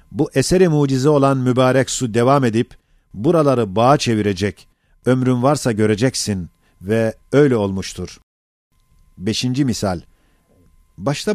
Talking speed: 105 wpm